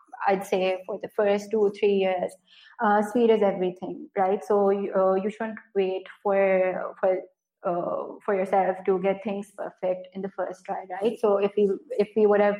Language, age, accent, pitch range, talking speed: English, 20-39, Indian, 185-205 Hz, 190 wpm